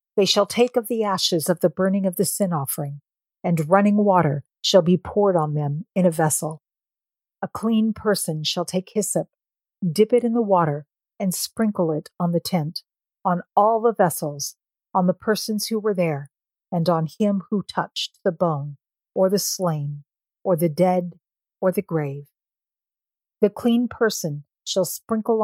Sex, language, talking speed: female, English, 170 wpm